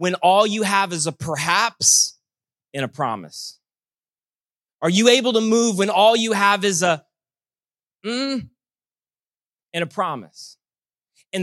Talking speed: 135 wpm